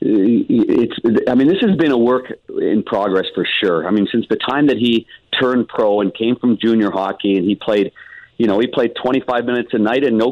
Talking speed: 225 wpm